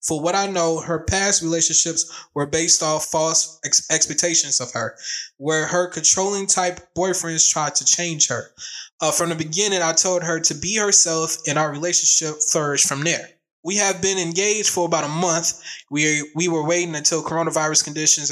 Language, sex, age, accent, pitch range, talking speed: English, male, 20-39, American, 150-180 Hz, 175 wpm